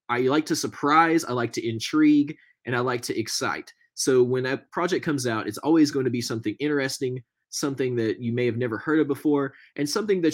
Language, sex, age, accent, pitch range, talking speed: English, male, 20-39, American, 120-150 Hz, 220 wpm